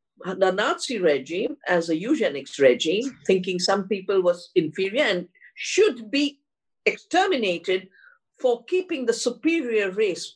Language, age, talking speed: English, 50-69, 120 wpm